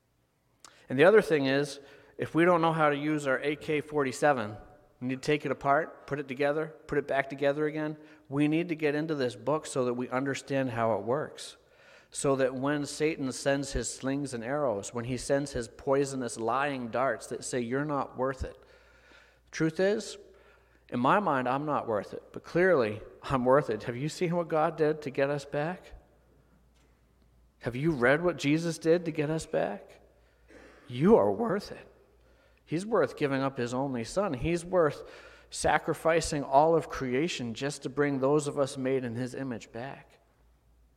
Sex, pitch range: male, 120-150 Hz